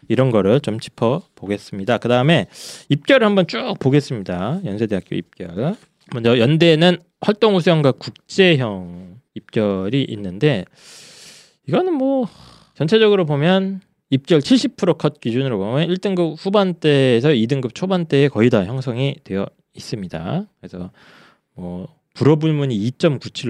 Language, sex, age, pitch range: Korean, male, 20-39, 110-170 Hz